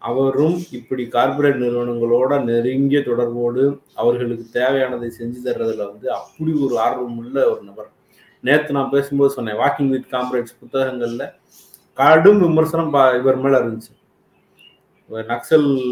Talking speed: 115 wpm